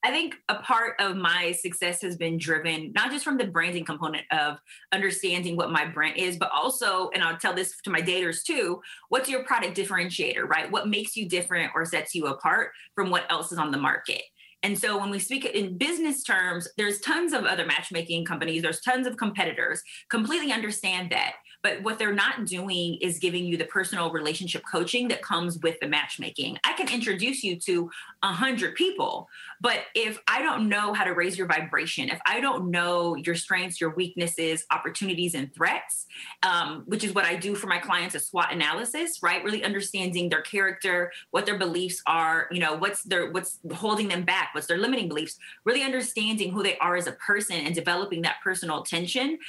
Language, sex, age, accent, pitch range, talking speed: English, female, 30-49, American, 170-215 Hz, 200 wpm